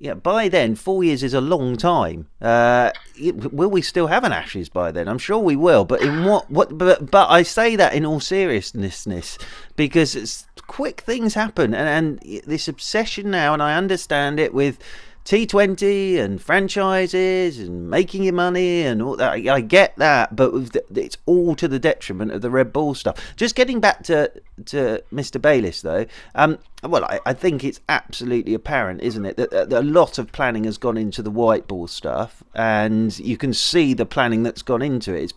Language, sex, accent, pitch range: English, male, British, 115-170 Hz